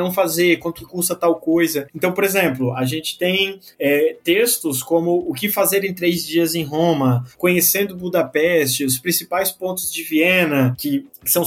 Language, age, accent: Portuguese, 20-39, Brazilian